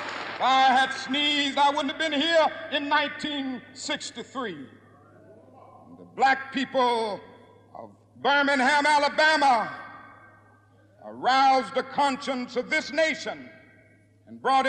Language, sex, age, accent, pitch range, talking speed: English, male, 60-79, American, 250-305 Hz, 100 wpm